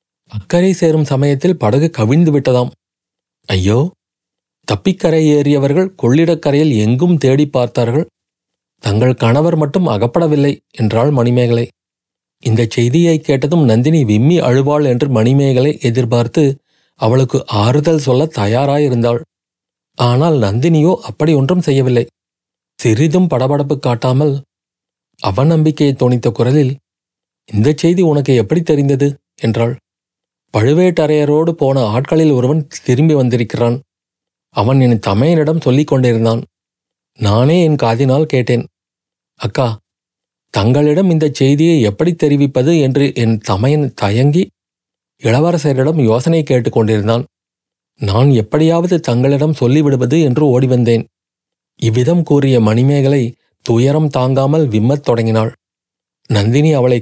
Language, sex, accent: Tamil, male, native